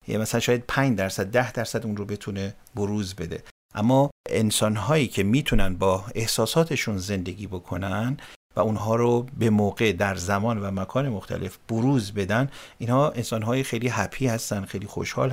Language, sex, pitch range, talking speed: Persian, male, 100-135 Hz, 155 wpm